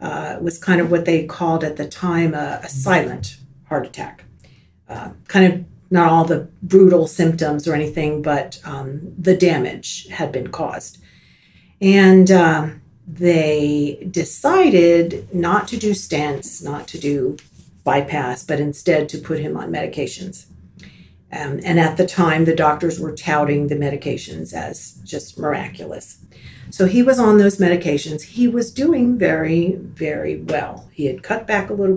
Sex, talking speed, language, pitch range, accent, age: female, 155 wpm, English, 150-185 Hz, American, 50-69